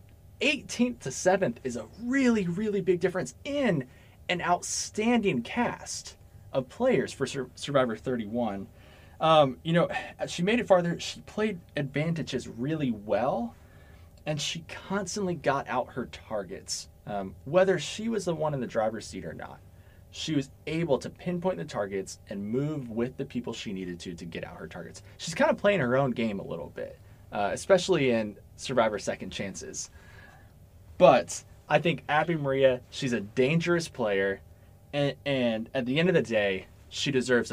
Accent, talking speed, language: American, 165 wpm, English